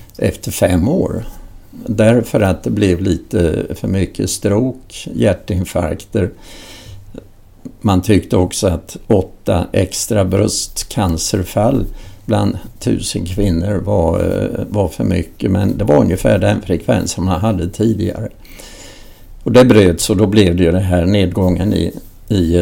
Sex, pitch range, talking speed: male, 90-110 Hz, 130 wpm